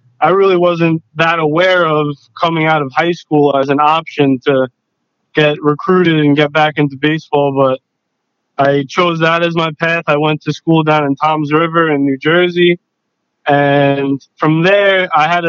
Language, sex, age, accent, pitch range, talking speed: English, male, 20-39, American, 140-165 Hz, 175 wpm